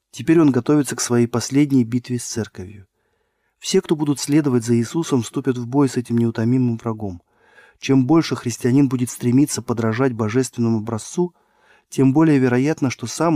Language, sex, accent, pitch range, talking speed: Russian, male, native, 115-140 Hz, 155 wpm